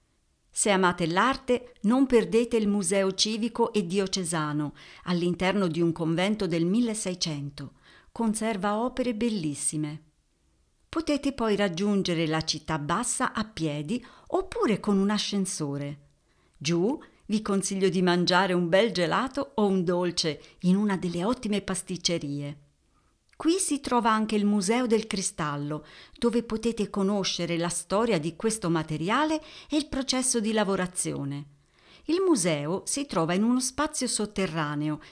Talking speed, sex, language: 130 wpm, female, Italian